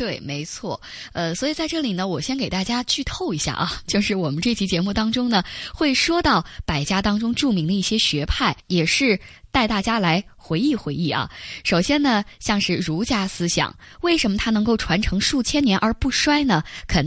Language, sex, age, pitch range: Chinese, female, 20-39, 160-225 Hz